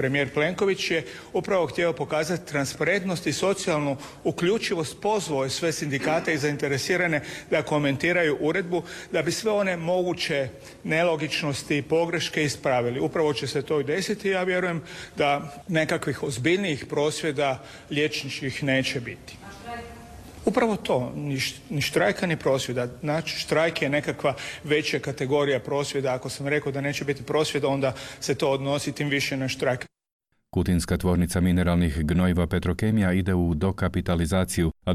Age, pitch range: 40-59, 90-145 Hz